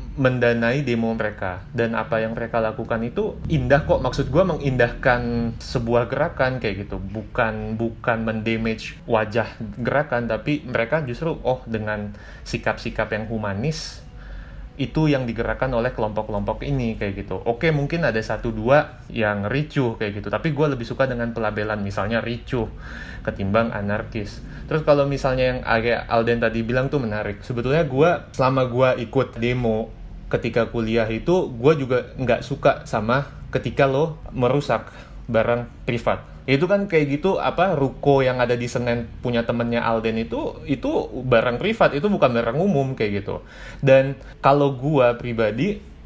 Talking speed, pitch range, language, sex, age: 150 wpm, 110-140 Hz, Indonesian, male, 30-49